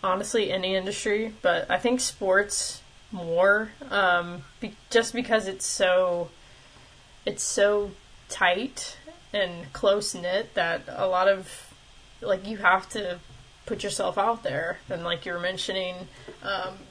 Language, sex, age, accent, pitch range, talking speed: English, female, 20-39, American, 185-225 Hz, 130 wpm